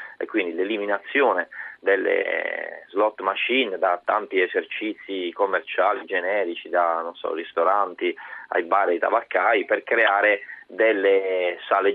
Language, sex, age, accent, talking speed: Italian, male, 30-49, native, 120 wpm